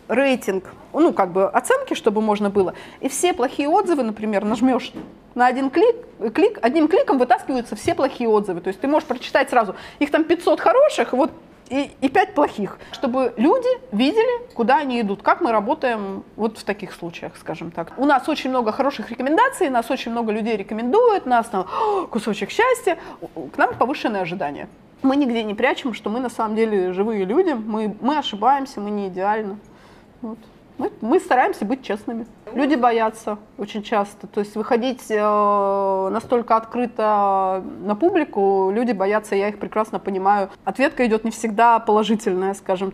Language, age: Russian, 30-49